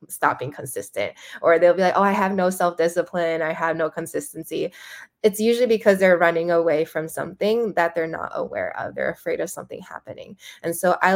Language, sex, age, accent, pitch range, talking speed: English, female, 20-39, American, 165-195 Hz, 200 wpm